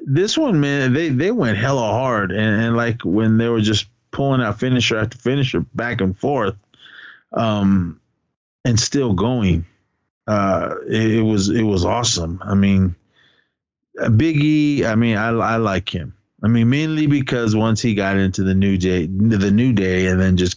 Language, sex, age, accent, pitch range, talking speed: English, male, 30-49, American, 95-120 Hz, 180 wpm